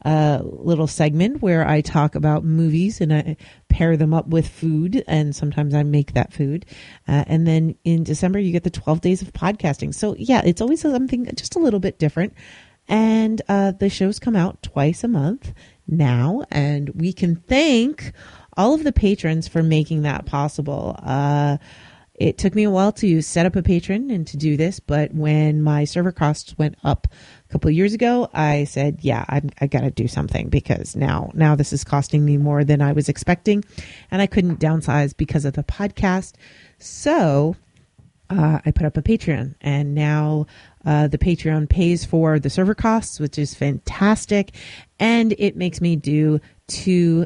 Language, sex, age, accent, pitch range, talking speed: English, female, 30-49, American, 150-190 Hz, 185 wpm